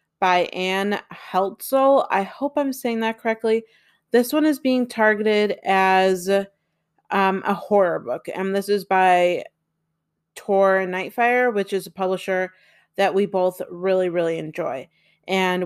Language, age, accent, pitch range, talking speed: English, 30-49, American, 185-210 Hz, 140 wpm